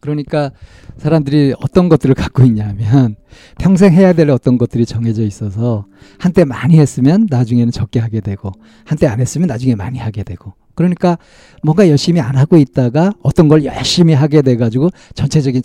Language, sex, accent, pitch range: Korean, male, native, 120-165 Hz